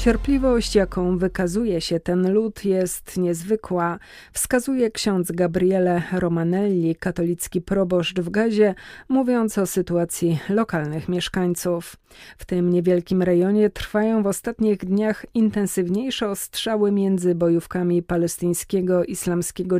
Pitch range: 175-205 Hz